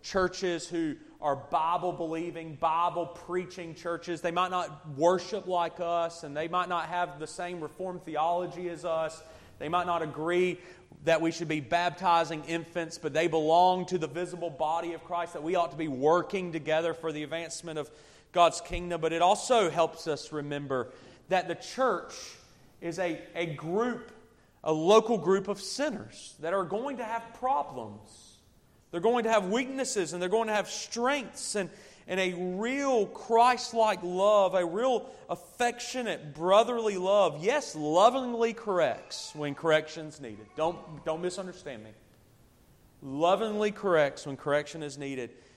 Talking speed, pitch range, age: 155 wpm, 150-185 Hz, 30-49